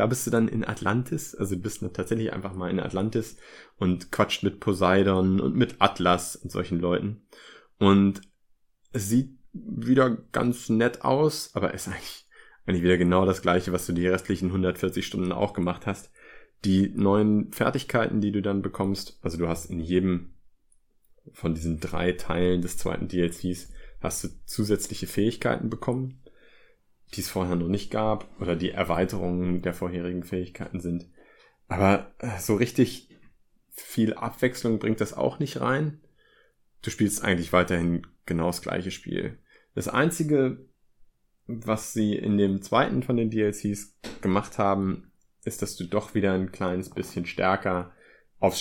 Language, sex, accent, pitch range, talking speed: German, male, German, 90-105 Hz, 155 wpm